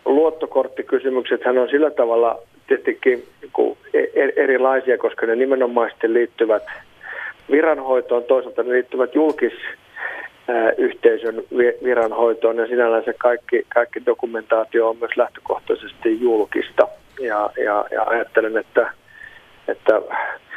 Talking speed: 100 wpm